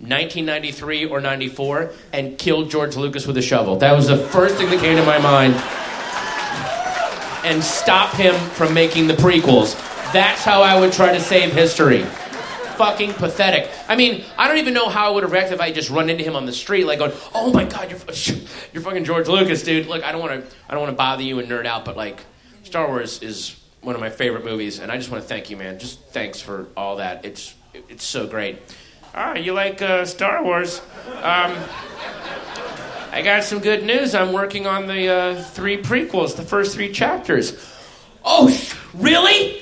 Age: 30-49